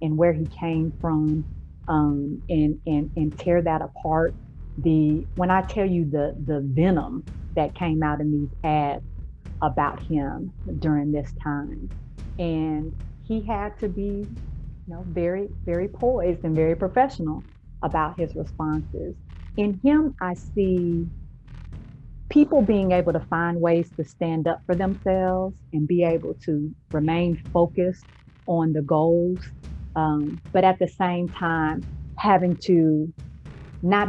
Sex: female